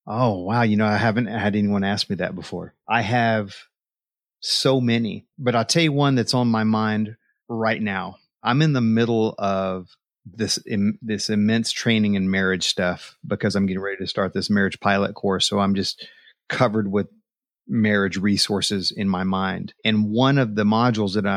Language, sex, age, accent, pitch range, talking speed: English, male, 30-49, American, 100-115 Hz, 185 wpm